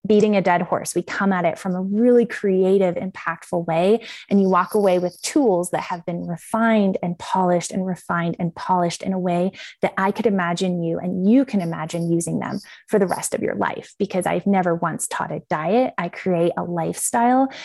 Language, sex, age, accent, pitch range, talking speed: English, female, 20-39, American, 175-215 Hz, 205 wpm